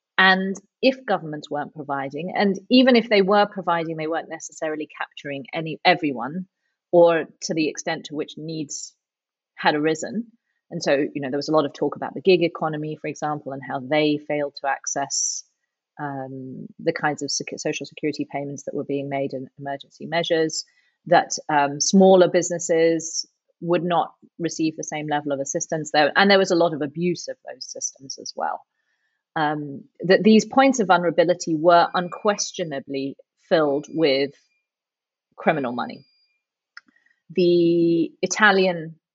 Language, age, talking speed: English, 30-49, 155 wpm